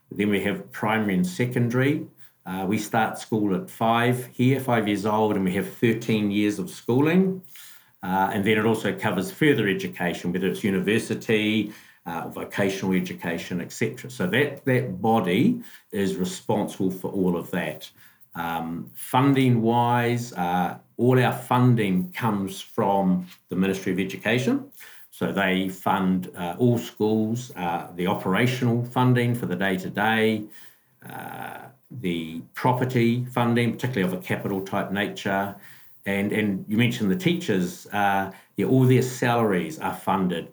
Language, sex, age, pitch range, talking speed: English, male, 50-69, 95-120 Hz, 140 wpm